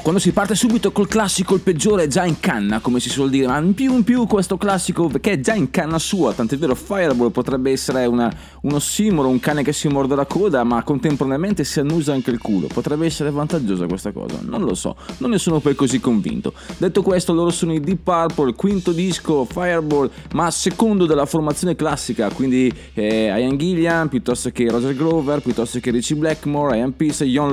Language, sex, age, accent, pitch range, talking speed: Italian, male, 20-39, native, 125-175 Hz, 210 wpm